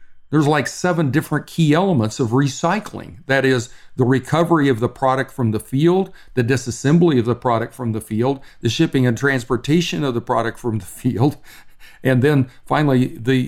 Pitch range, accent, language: 115-145 Hz, American, English